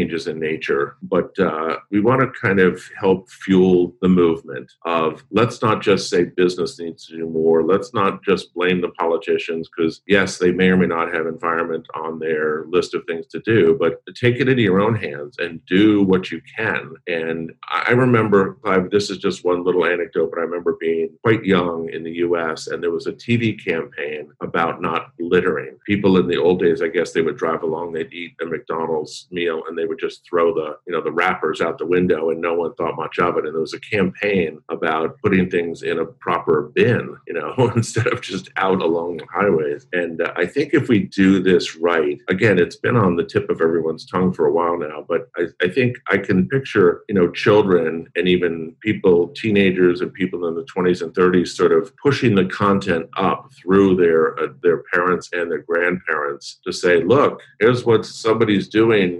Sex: male